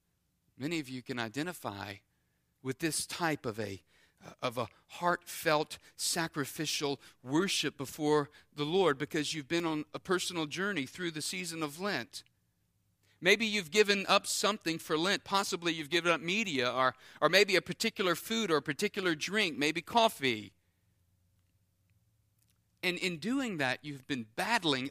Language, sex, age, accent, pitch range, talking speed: English, male, 40-59, American, 120-190 Hz, 145 wpm